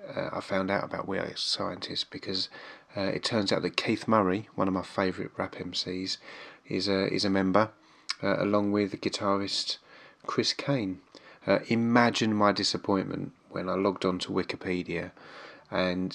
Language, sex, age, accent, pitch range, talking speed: English, male, 30-49, British, 90-100 Hz, 160 wpm